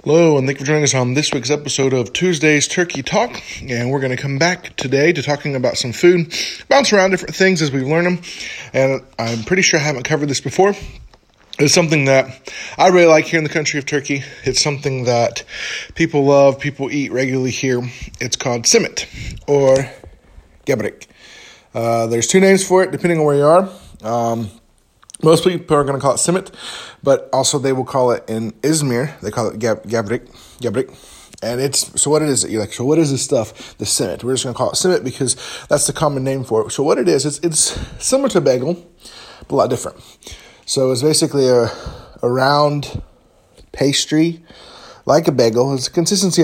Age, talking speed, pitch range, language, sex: 20-39, 205 wpm, 125-165 Hz, English, male